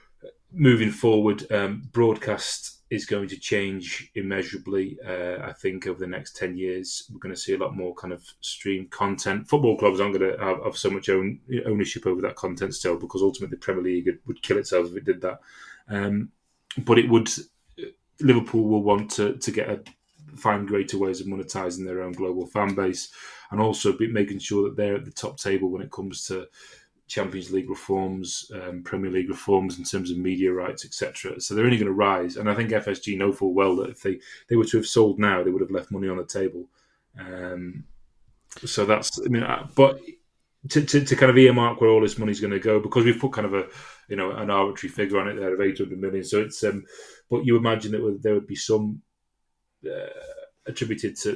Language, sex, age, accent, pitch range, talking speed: English, male, 30-49, British, 95-115 Hz, 215 wpm